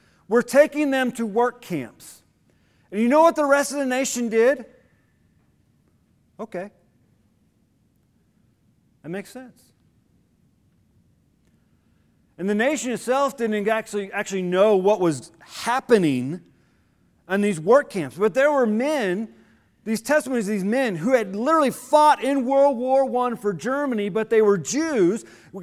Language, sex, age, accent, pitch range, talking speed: English, male, 40-59, American, 215-280 Hz, 135 wpm